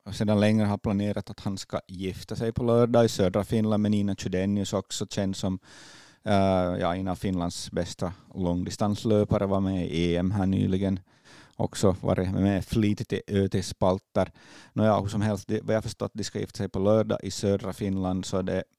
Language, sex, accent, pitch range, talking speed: Swedish, male, Finnish, 90-105 Hz, 180 wpm